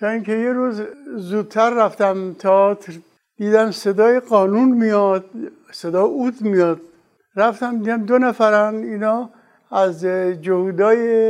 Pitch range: 190-230 Hz